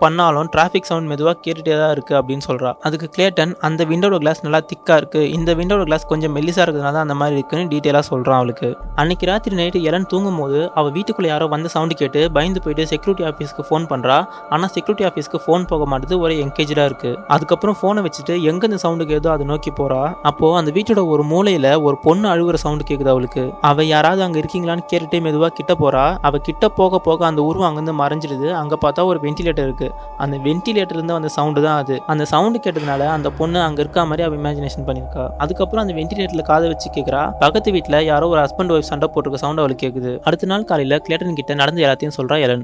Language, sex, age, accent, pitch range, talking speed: Tamil, male, 20-39, native, 145-175 Hz, 145 wpm